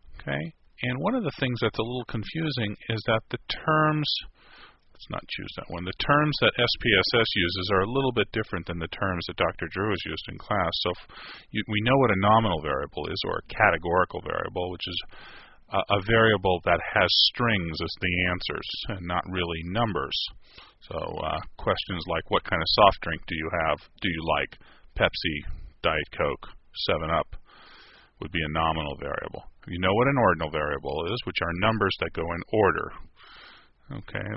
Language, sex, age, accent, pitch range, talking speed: English, male, 40-59, American, 85-110 Hz, 185 wpm